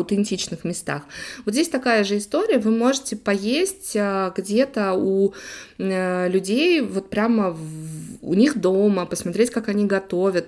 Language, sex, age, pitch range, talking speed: Russian, female, 20-39, 185-230 Hz, 130 wpm